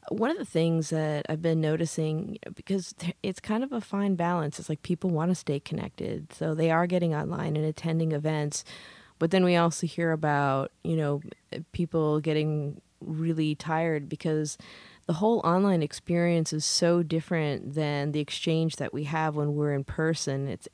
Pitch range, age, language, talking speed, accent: 150-170 Hz, 20-39, English, 175 wpm, American